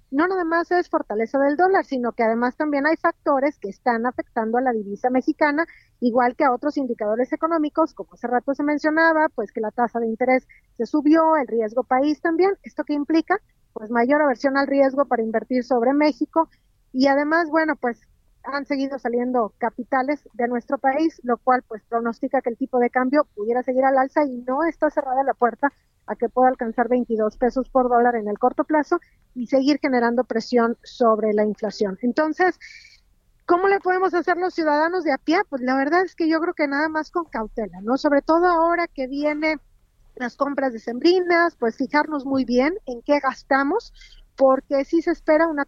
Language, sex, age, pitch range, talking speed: Spanish, female, 40-59, 245-315 Hz, 195 wpm